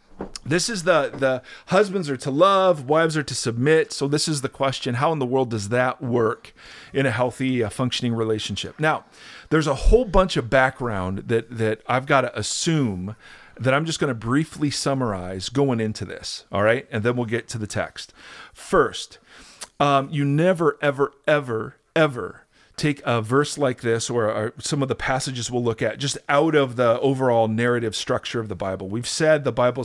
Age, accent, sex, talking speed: 40-59, American, male, 195 wpm